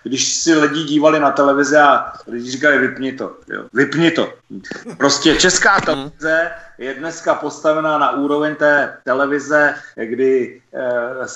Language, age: Czech, 30-49